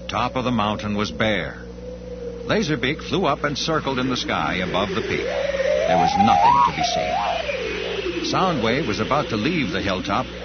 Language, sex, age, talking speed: English, male, 60-79, 170 wpm